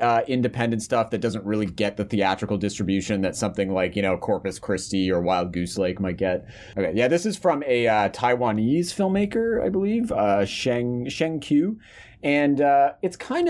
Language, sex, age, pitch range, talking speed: English, male, 30-49, 95-120 Hz, 185 wpm